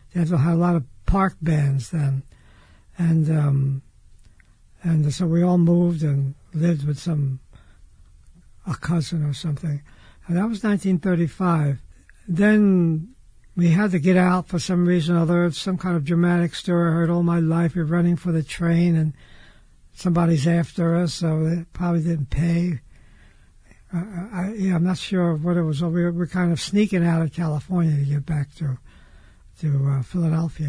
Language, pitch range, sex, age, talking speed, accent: English, 150-180 Hz, male, 60-79, 170 wpm, American